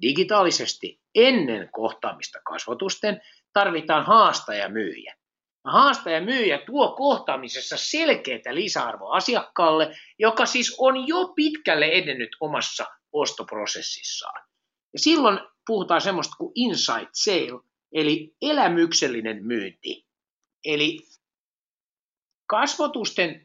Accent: native